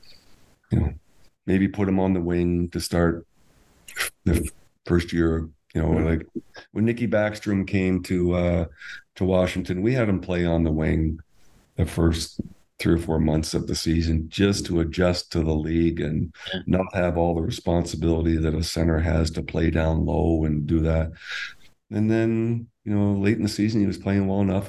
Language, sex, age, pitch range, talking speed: English, male, 50-69, 80-100 Hz, 185 wpm